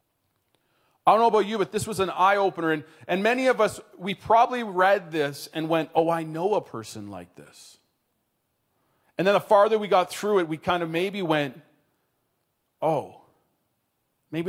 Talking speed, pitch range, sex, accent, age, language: 180 wpm, 130-180 Hz, male, American, 30-49, English